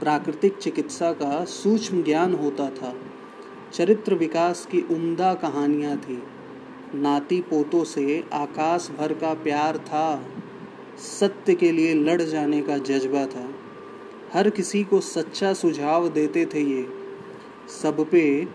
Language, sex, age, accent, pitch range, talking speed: Hindi, male, 30-49, native, 140-185 Hz, 125 wpm